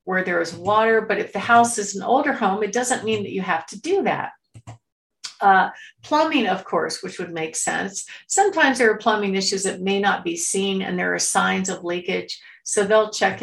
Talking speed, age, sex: 215 wpm, 50-69, female